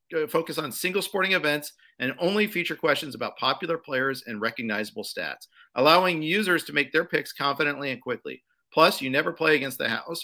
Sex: male